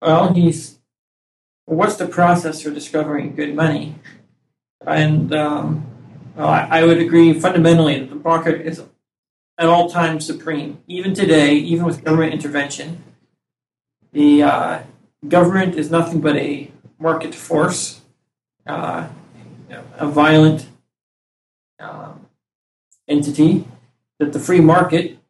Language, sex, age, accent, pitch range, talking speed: English, male, 40-59, American, 150-170 Hz, 110 wpm